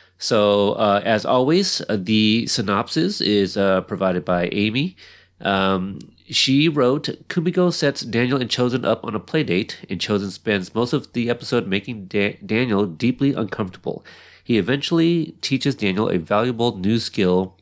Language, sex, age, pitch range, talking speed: English, male, 30-49, 95-130 Hz, 150 wpm